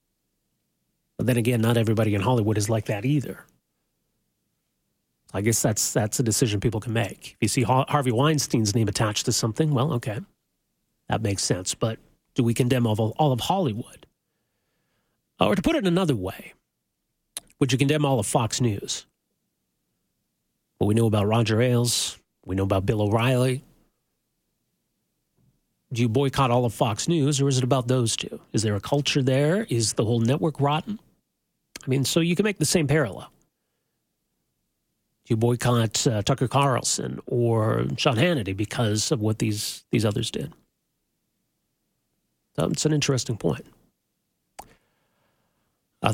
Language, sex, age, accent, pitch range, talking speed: English, male, 40-59, American, 110-140 Hz, 150 wpm